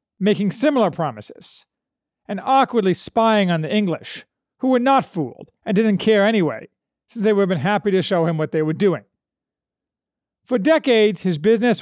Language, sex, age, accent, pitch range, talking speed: English, male, 40-59, American, 170-225 Hz, 175 wpm